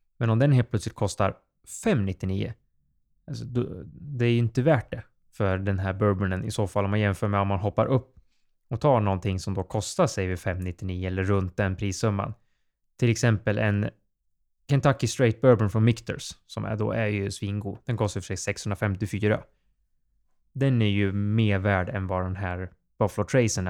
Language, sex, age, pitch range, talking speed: Swedish, male, 20-39, 95-120 Hz, 180 wpm